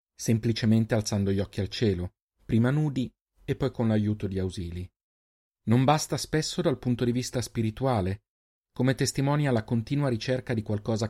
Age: 30-49